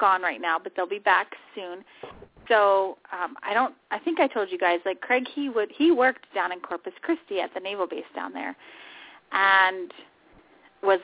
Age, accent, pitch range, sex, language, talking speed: 30-49, American, 195-285 Hz, female, English, 195 wpm